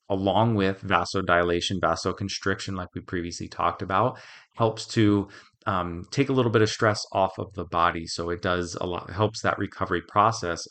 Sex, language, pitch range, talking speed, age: male, English, 90-110 Hz, 175 wpm, 30-49